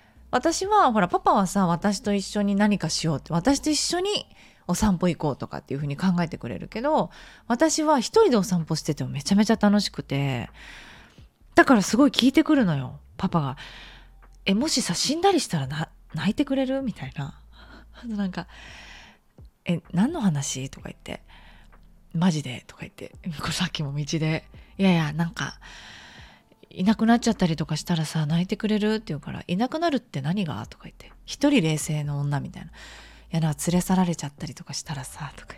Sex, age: female, 20-39